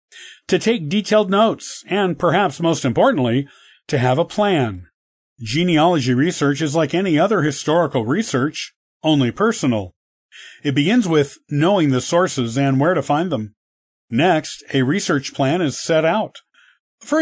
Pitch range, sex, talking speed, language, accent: 130-175 Hz, male, 145 wpm, English, American